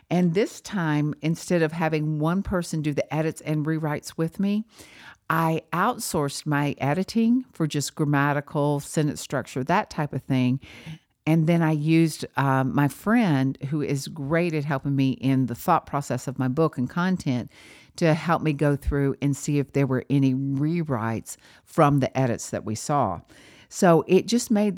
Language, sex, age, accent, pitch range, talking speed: English, female, 50-69, American, 135-165 Hz, 175 wpm